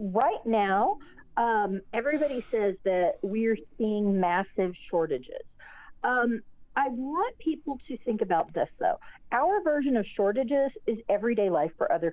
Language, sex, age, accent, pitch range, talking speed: English, female, 40-59, American, 190-255 Hz, 140 wpm